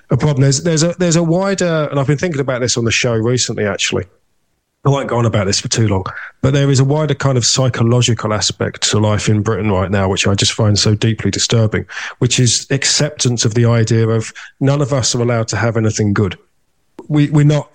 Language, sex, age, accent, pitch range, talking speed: English, male, 40-59, British, 110-135 Hz, 235 wpm